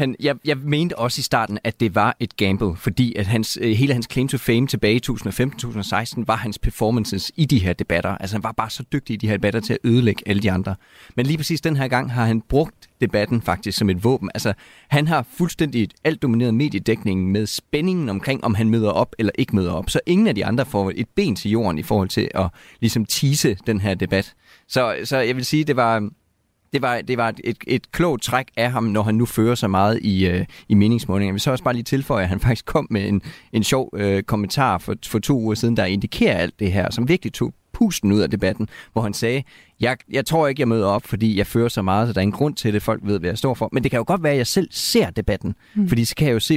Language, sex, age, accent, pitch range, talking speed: Danish, male, 30-49, native, 100-130 Hz, 255 wpm